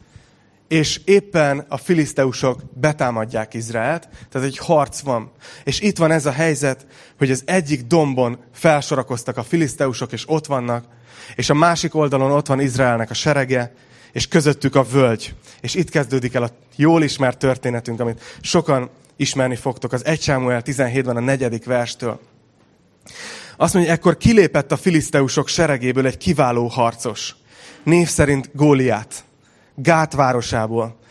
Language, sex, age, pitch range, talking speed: Hungarian, male, 30-49, 125-155 Hz, 140 wpm